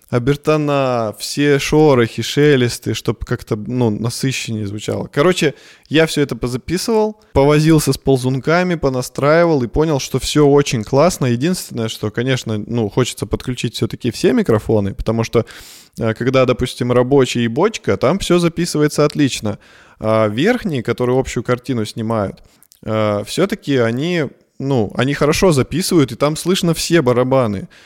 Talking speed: 130 wpm